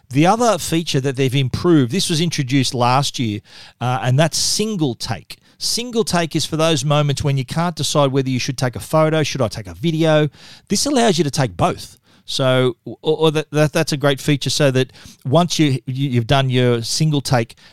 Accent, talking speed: Australian, 205 wpm